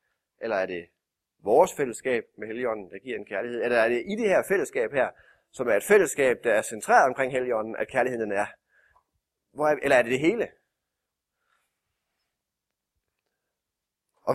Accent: native